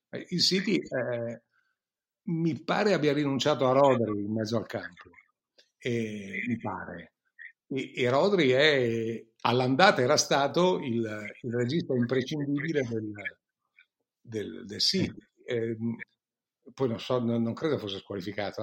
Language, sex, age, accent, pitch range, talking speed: Italian, male, 60-79, native, 115-165 Hz, 130 wpm